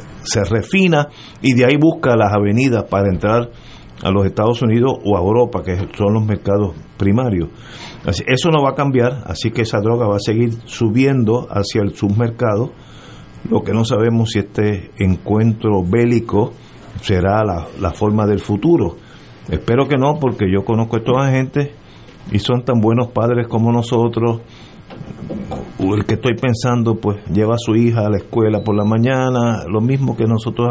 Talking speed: 170 wpm